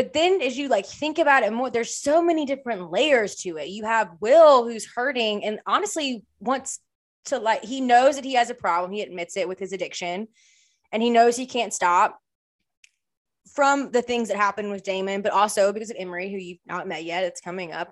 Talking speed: 220 wpm